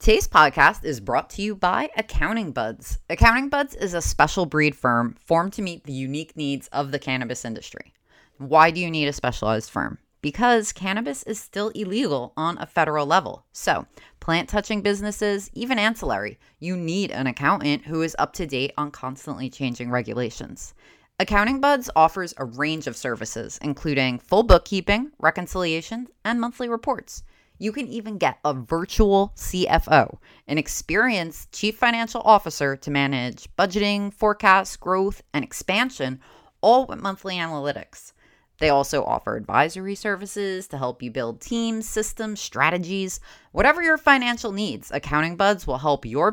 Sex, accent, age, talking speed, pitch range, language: female, American, 30-49, 155 wpm, 145-215 Hz, English